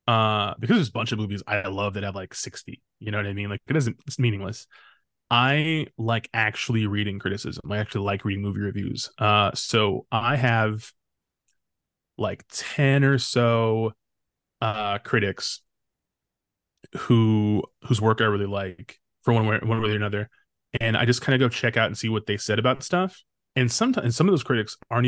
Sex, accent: male, American